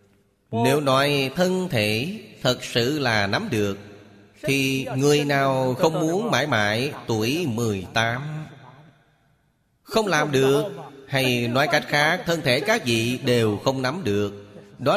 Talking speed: 135 wpm